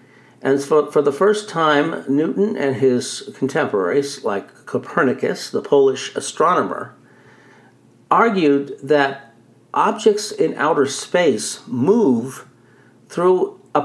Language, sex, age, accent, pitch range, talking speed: English, male, 50-69, American, 125-170 Hz, 100 wpm